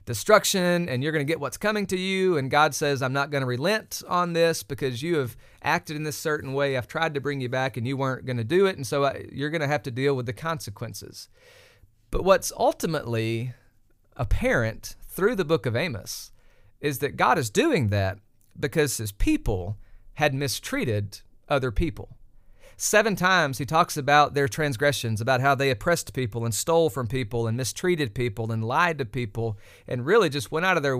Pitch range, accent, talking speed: 115-155 Hz, American, 200 wpm